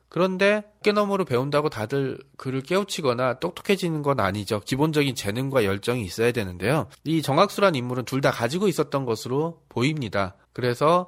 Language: Korean